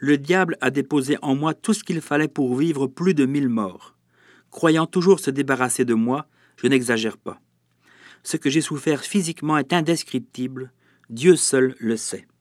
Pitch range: 120-160 Hz